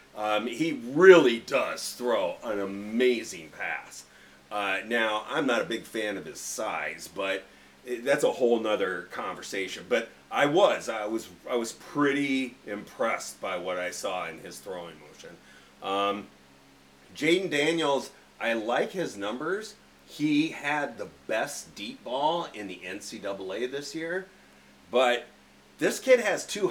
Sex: male